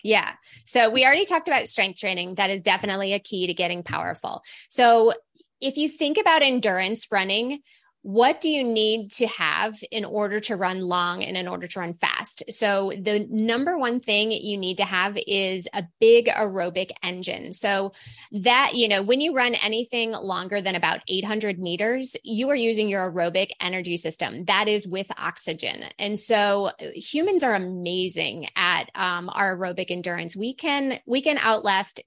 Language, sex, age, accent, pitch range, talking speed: English, female, 20-39, American, 190-230 Hz, 170 wpm